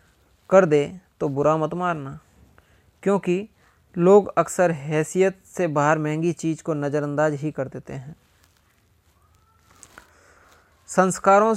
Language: Hindi